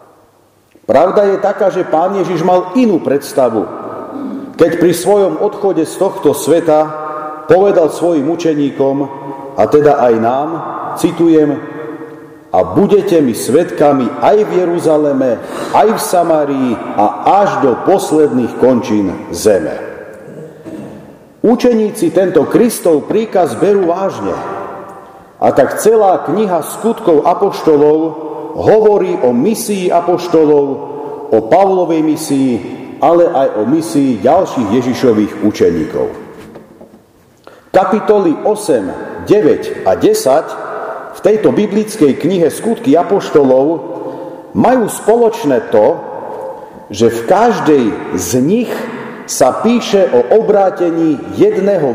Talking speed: 105 wpm